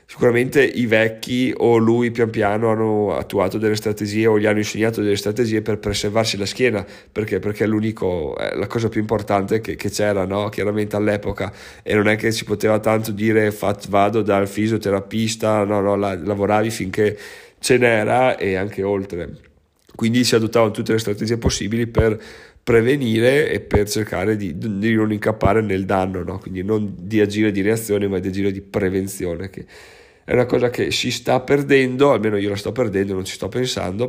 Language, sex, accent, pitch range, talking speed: Italian, male, native, 105-125 Hz, 185 wpm